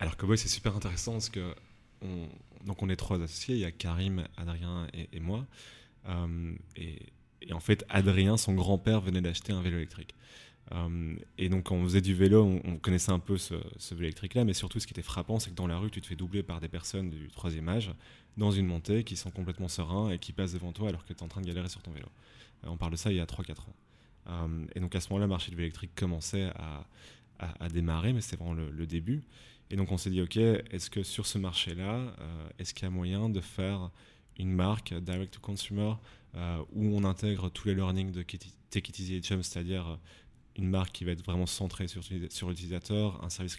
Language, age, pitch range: French, 20-39, 85-100 Hz